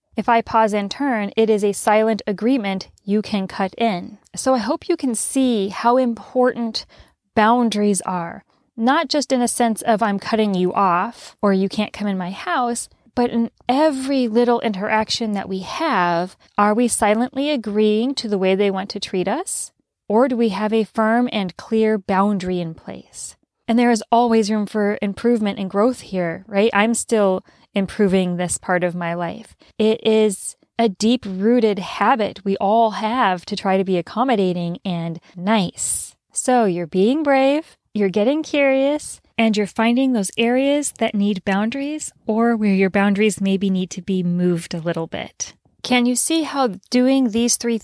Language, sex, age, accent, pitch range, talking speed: English, female, 20-39, American, 200-240 Hz, 175 wpm